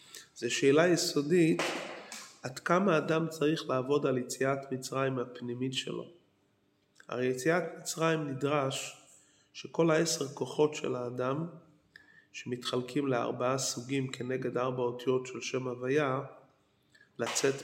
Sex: male